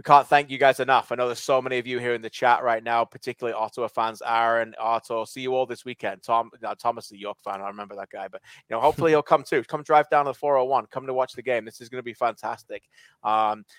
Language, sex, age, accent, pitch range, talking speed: English, male, 20-39, British, 120-150 Hz, 280 wpm